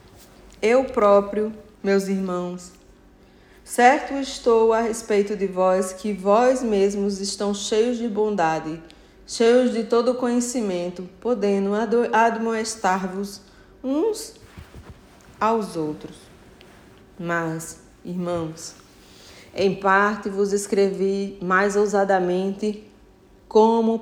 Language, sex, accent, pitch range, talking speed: Portuguese, female, Brazilian, 190-235 Hz, 85 wpm